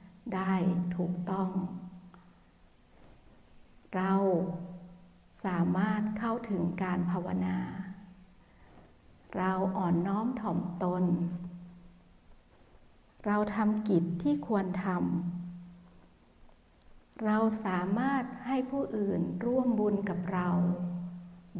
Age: 60-79